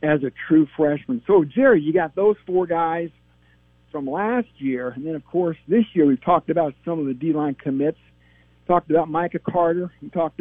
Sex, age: male, 60-79